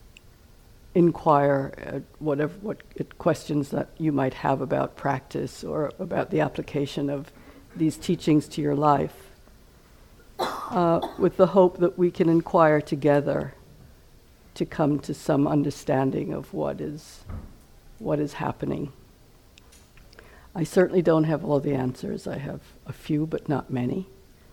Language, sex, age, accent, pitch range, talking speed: English, female, 60-79, American, 140-165 Hz, 135 wpm